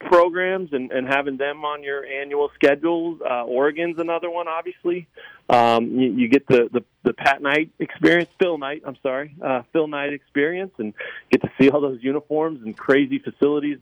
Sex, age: male, 40-59